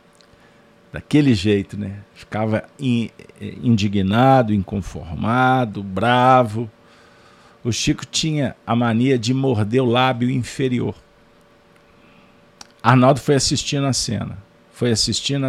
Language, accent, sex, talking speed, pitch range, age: Portuguese, Brazilian, male, 95 wpm, 110-135 Hz, 50-69